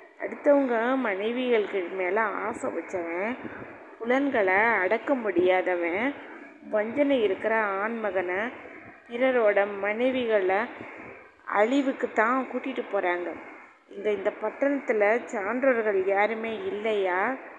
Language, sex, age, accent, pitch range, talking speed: Tamil, female, 20-39, native, 200-245 Hz, 80 wpm